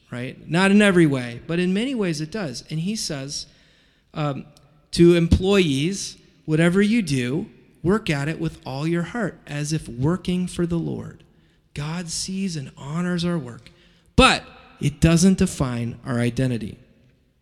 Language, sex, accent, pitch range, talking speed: English, male, American, 155-235 Hz, 155 wpm